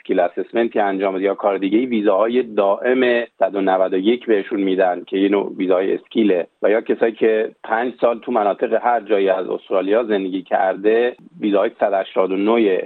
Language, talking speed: Persian, 145 wpm